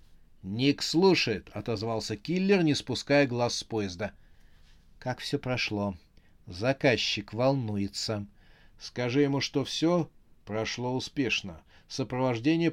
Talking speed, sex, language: 100 wpm, male, Russian